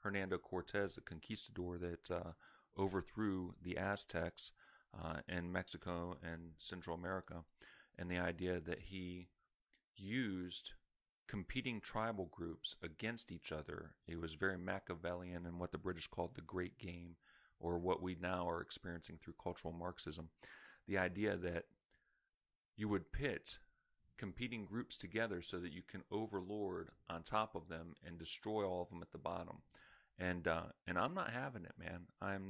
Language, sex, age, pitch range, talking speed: English, male, 40-59, 90-110 Hz, 155 wpm